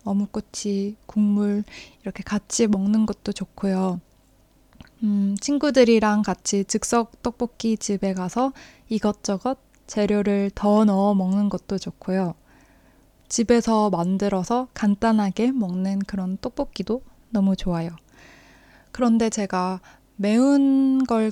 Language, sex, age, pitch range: Korean, female, 20-39, 195-225 Hz